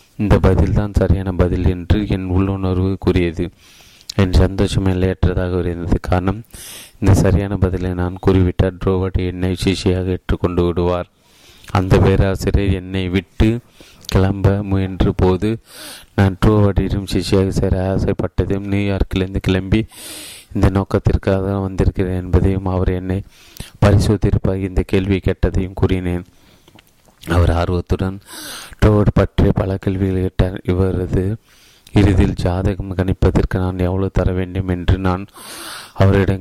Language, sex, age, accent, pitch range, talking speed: Tamil, male, 30-49, native, 90-100 Hz, 110 wpm